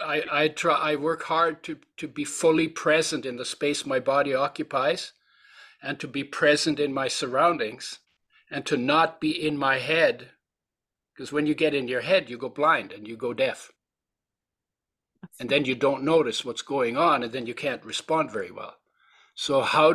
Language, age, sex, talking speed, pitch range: English, 60-79, male, 185 wpm, 135-165 Hz